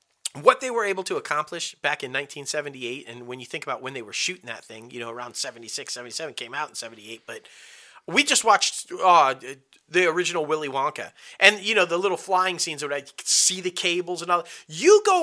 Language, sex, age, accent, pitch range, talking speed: English, male, 30-49, American, 145-235 Hz, 215 wpm